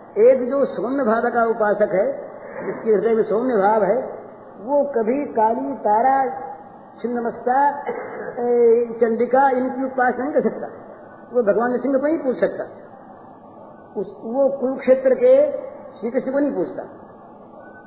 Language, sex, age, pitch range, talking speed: Hindi, female, 50-69, 225-275 Hz, 140 wpm